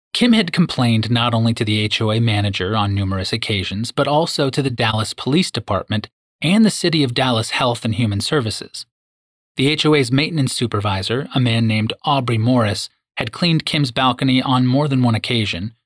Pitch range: 105-140 Hz